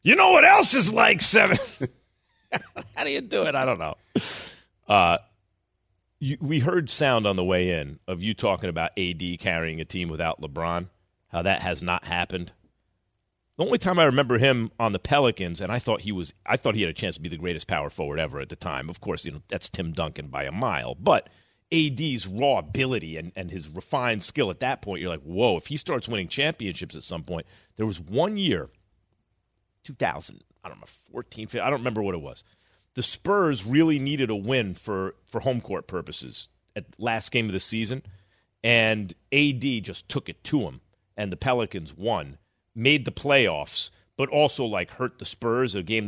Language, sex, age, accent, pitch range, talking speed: English, male, 40-59, American, 95-130 Hz, 205 wpm